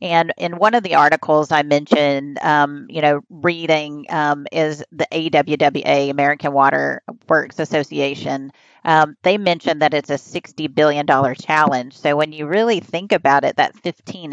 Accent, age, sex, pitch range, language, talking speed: American, 40-59, female, 145-165 Hz, English, 160 wpm